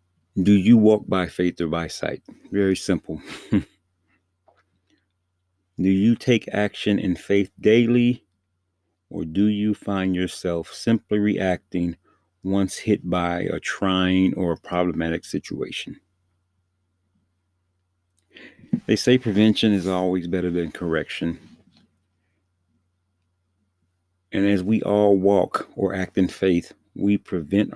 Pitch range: 90-100 Hz